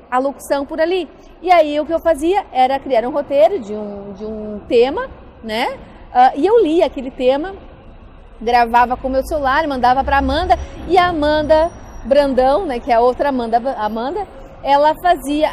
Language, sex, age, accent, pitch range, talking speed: Portuguese, female, 40-59, Brazilian, 270-365 Hz, 180 wpm